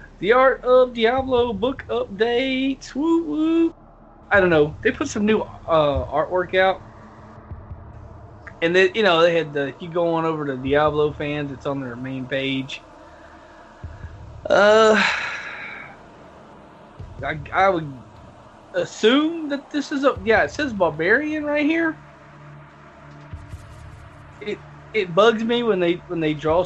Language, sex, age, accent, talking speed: English, male, 20-39, American, 135 wpm